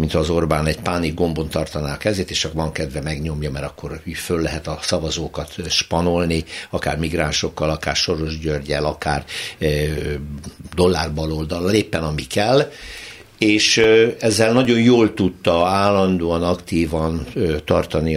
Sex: male